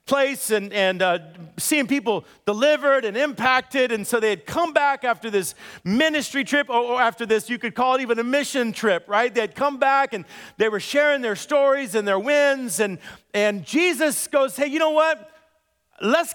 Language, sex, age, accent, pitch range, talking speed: English, male, 40-59, American, 230-285 Hz, 195 wpm